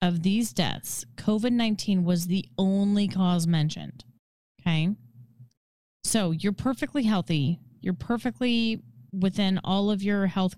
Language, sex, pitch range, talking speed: English, female, 150-215 Hz, 120 wpm